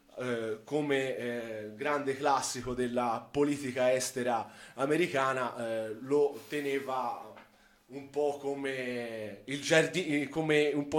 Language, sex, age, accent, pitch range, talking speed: Italian, male, 20-39, native, 130-155 Hz, 85 wpm